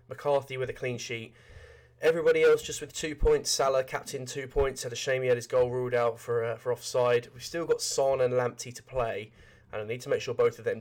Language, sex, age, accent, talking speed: English, male, 20-39, British, 250 wpm